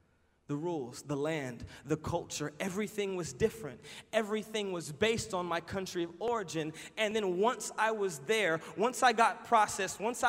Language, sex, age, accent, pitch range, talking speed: English, male, 20-39, American, 220-300 Hz, 165 wpm